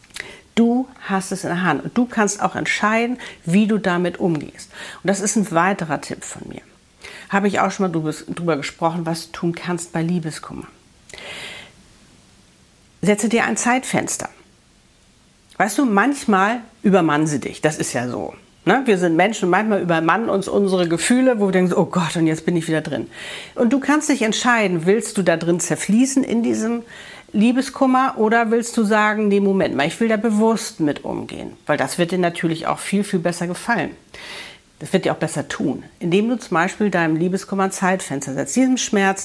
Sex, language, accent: female, German, German